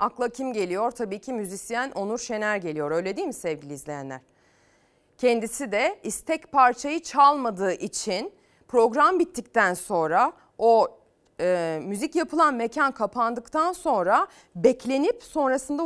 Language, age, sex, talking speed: Turkish, 40-59, female, 120 wpm